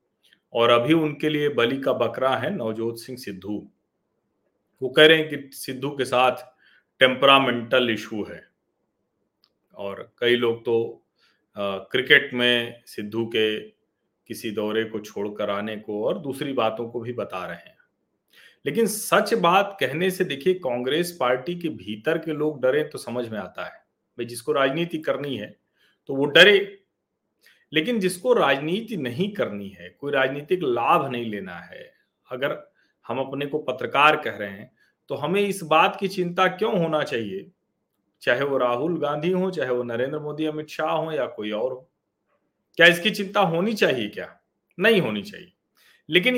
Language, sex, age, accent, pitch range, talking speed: Hindi, male, 40-59, native, 120-185 Hz, 165 wpm